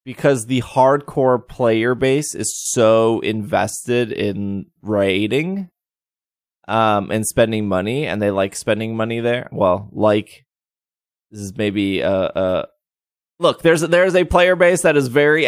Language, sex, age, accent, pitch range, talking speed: English, male, 20-39, American, 110-140 Hz, 145 wpm